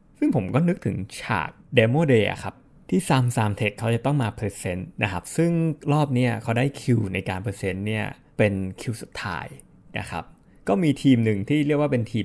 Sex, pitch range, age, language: male, 110-145 Hz, 20-39, Thai